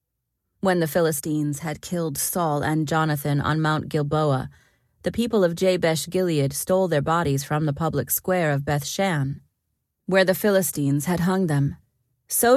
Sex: female